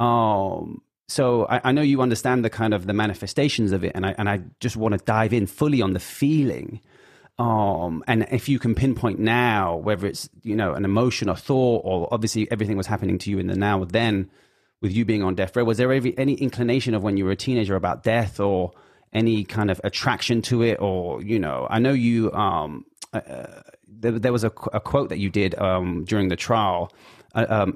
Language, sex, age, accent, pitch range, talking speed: English, male, 30-49, British, 100-120 Hz, 215 wpm